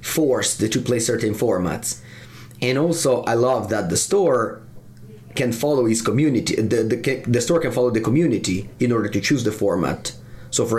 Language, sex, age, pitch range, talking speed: English, male, 30-49, 110-140 Hz, 185 wpm